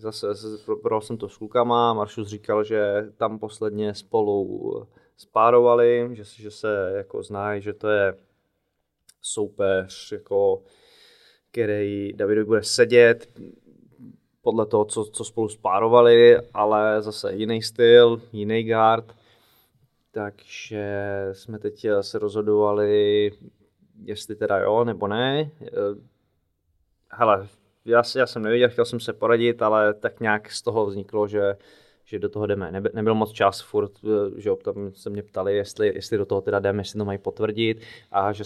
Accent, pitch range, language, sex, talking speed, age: native, 100-115 Hz, Czech, male, 140 wpm, 20-39